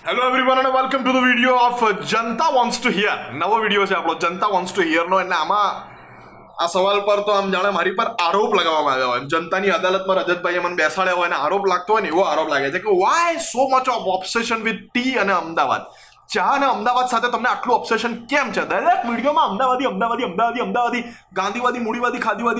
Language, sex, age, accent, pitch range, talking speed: Gujarati, male, 20-39, native, 185-245 Hz, 125 wpm